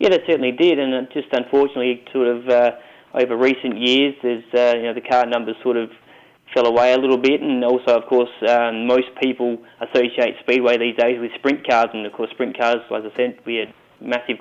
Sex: male